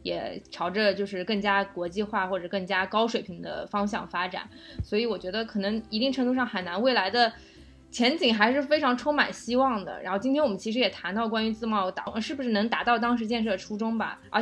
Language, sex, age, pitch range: Chinese, female, 20-39, 185-225 Hz